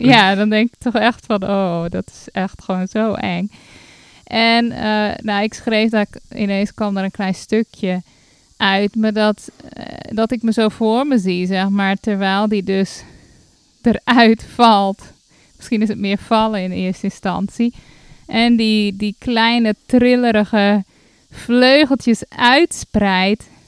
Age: 20-39